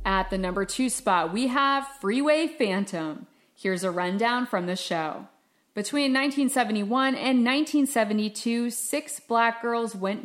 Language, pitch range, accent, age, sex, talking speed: English, 190-240 Hz, American, 30-49, female, 135 wpm